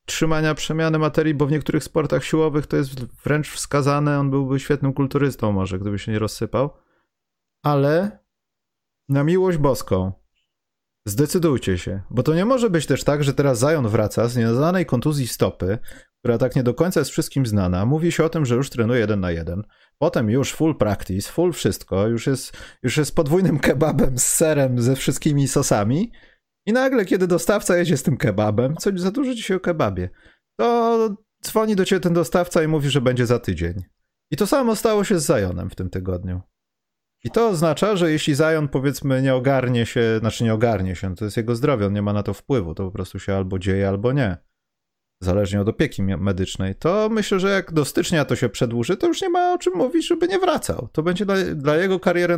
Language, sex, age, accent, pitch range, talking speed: Polish, male, 30-49, native, 110-170 Hz, 200 wpm